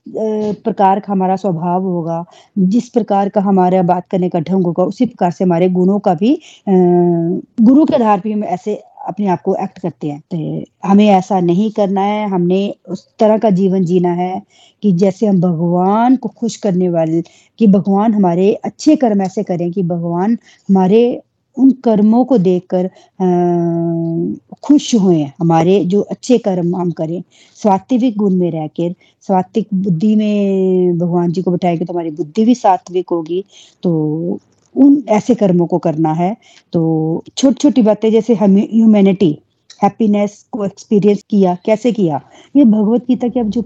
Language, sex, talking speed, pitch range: Hindi, female, 165 wpm, 180-220 Hz